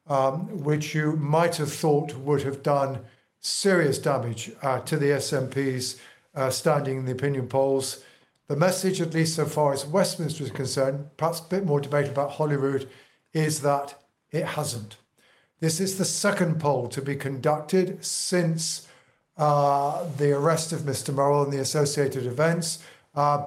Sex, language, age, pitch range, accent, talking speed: male, English, 50-69, 135-160 Hz, British, 155 wpm